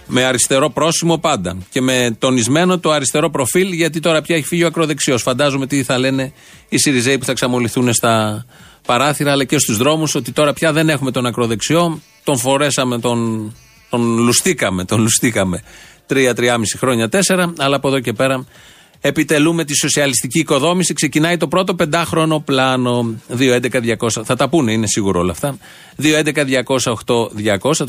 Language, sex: Greek, male